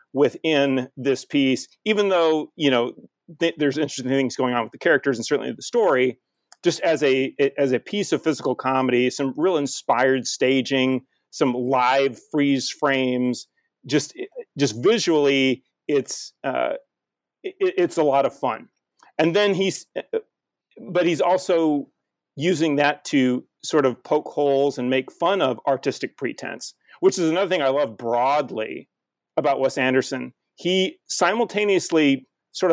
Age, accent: 40-59, American